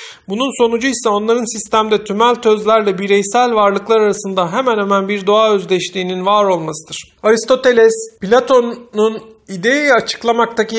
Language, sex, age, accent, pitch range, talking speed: Turkish, male, 50-69, native, 195-235 Hz, 115 wpm